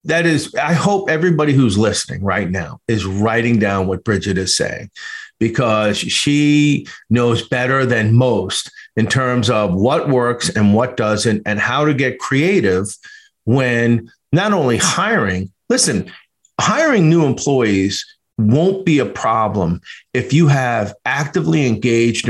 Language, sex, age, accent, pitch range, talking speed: English, male, 50-69, American, 110-155 Hz, 140 wpm